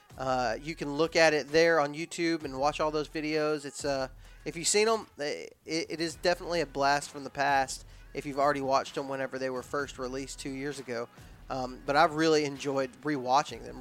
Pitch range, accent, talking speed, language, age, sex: 135-160 Hz, American, 215 wpm, English, 20-39, male